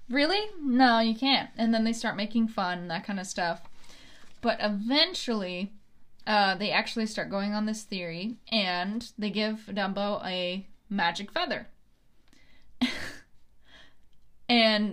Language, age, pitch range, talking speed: English, 10-29, 200-240 Hz, 135 wpm